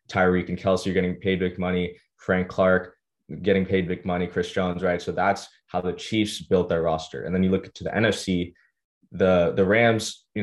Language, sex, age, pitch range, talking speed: English, male, 20-39, 90-100 Hz, 205 wpm